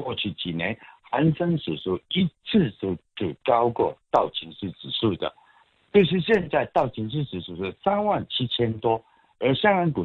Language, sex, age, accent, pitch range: Chinese, male, 60-79, native, 95-155 Hz